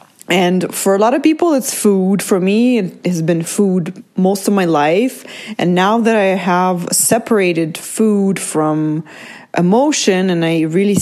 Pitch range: 175-220 Hz